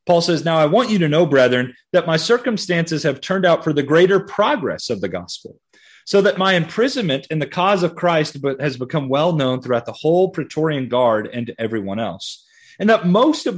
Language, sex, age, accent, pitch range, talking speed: English, male, 30-49, American, 135-185 Hz, 210 wpm